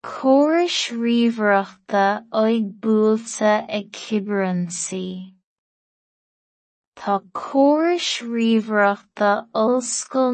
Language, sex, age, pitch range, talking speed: English, female, 20-39, 200-235 Hz, 60 wpm